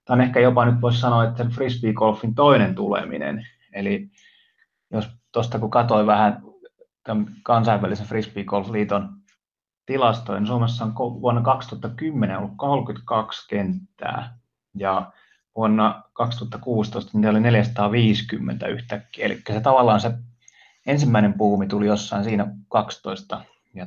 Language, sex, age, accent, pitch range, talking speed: Finnish, male, 30-49, native, 105-120 Hz, 120 wpm